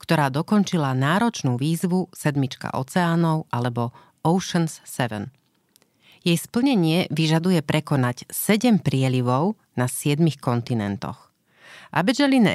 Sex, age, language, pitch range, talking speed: female, 40-59, Slovak, 130-175 Hz, 90 wpm